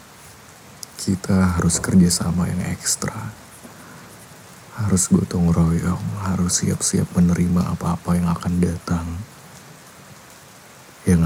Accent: native